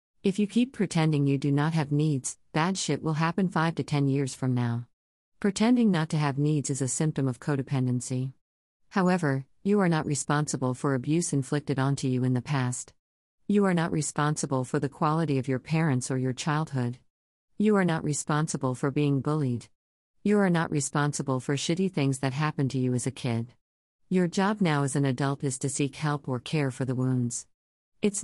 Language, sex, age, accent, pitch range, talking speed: English, female, 50-69, American, 130-160 Hz, 195 wpm